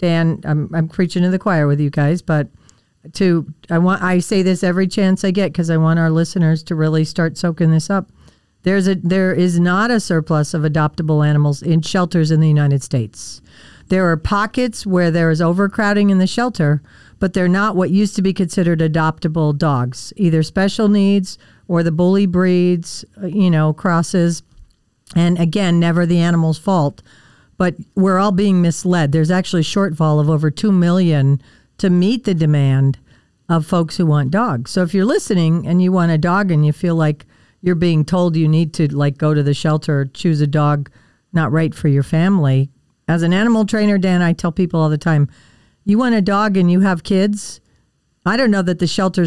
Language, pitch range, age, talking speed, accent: English, 155-190 Hz, 50-69, 200 wpm, American